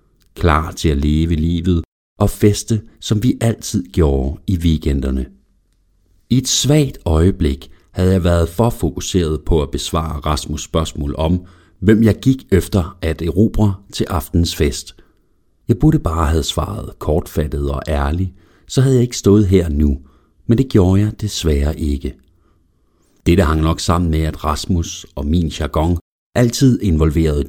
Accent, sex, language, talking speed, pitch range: native, male, Danish, 150 wpm, 80-105 Hz